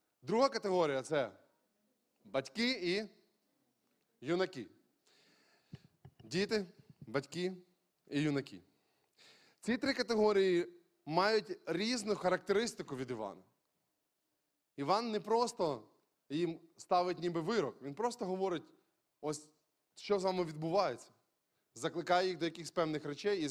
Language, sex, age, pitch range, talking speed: Ukrainian, male, 20-39, 160-210 Hz, 100 wpm